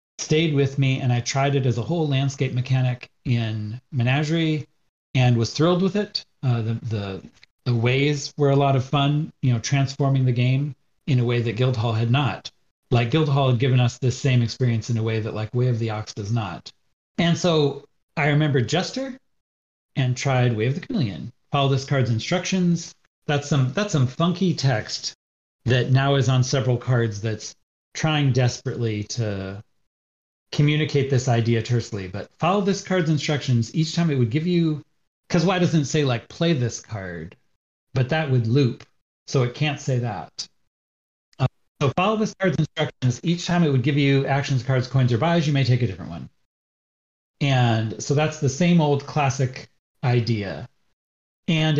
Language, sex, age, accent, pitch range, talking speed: English, male, 40-59, American, 120-150 Hz, 180 wpm